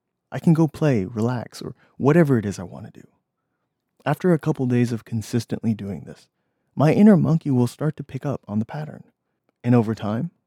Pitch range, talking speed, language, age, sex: 115-165 Hz, 200 wpm, English, 30-49, male